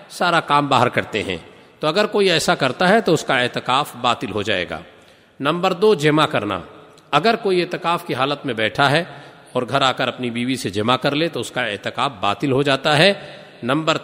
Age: 50-69